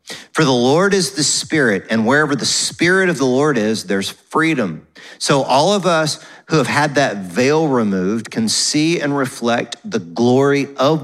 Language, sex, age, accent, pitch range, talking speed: English, male, 40-59, American, 125-165 Hz, 180 wpm